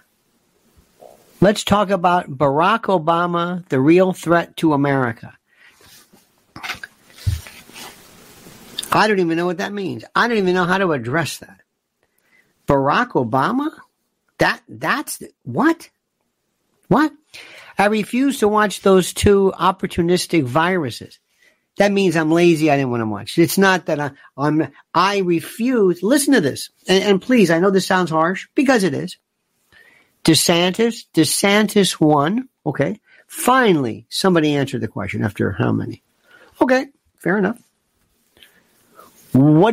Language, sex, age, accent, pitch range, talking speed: English, male, 50-69, American, 155-210 Hz, 130 wpm